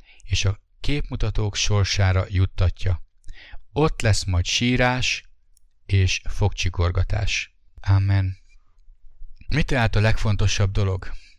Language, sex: English, male